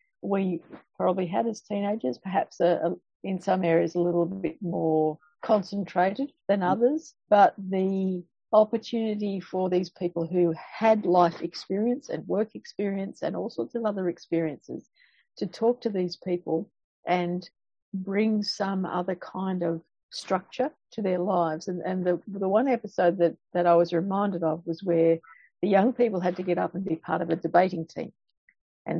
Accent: Australian